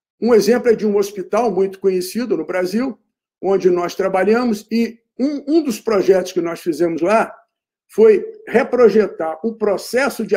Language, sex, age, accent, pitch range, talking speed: Portuguese, male, 50-69, Brazilian, 200-260 Hz, 155 wpm